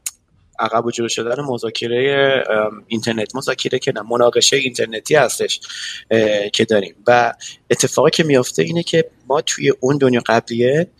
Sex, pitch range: male, 115-135 Hz